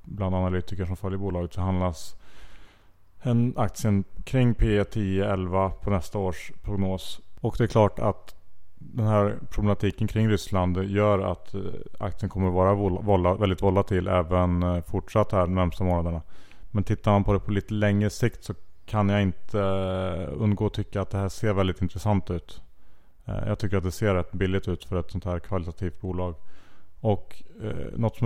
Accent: Norwegian